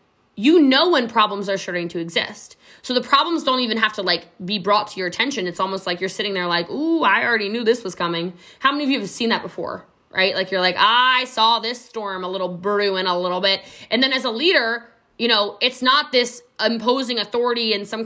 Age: 20-39